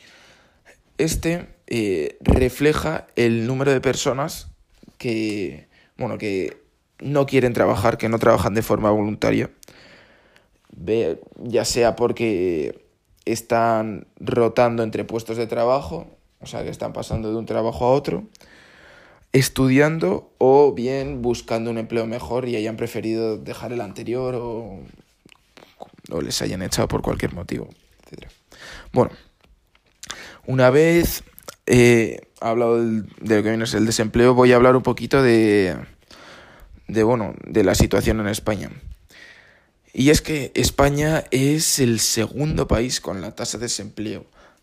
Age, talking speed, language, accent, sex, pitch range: 20-39, 130 wpm, Spanish, Spanish, male, 110-130 Hz